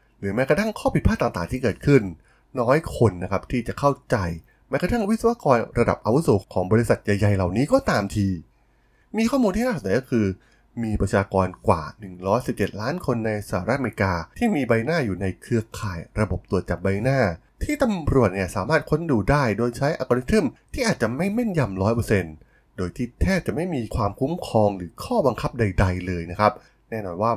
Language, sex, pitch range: Thai, male, 95-135 Hz